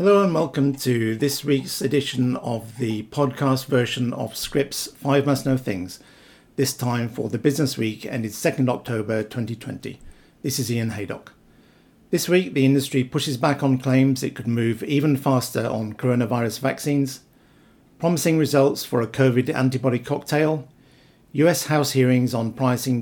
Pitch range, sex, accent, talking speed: 115-140 Hz, male, British, 155 wpm